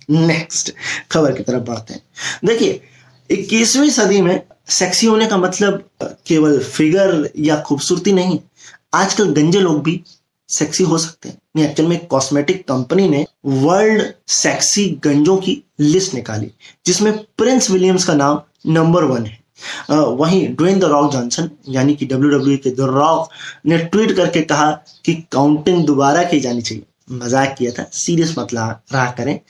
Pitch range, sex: 145-185 Hz, male